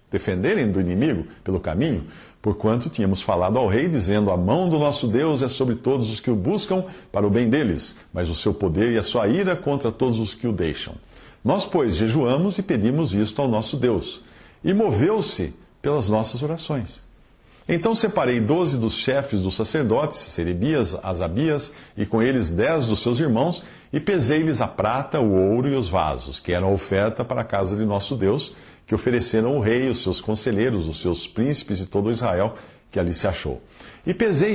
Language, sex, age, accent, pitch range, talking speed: English, male, 50-69, Brazilian, 100-135 Hz, 190 wpm